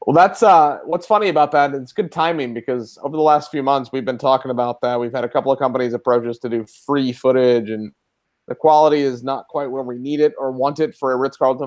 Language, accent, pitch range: English, American, 125-145 Hz